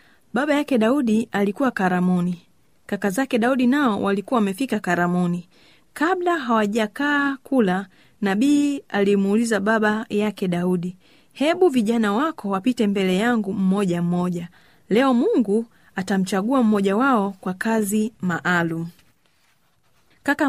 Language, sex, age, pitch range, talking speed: Swahili, female, 30-49, 185-245 Hz, 110 wpm